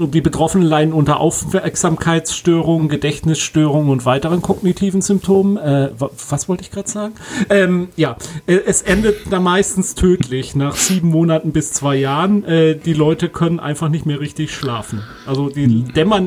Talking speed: 155 wpm